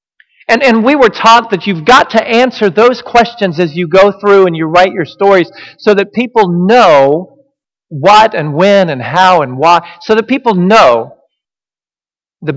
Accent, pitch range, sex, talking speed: American, 160-215 Hz, male, 175 wpm